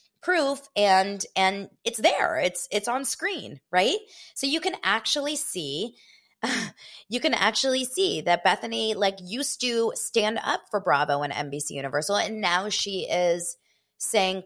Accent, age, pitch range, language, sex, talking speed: American, 20-39, 150-235 Hz, English, female, 155 wpm